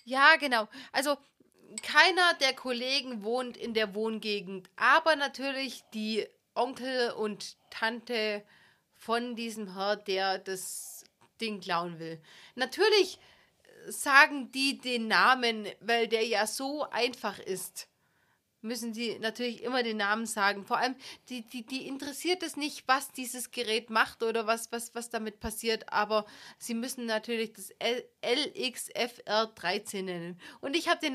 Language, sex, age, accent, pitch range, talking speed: German, female, 30-49, German, 225-315 Hz, 140 wpm